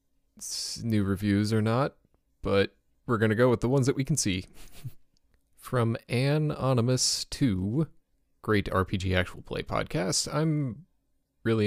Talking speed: 130 wpm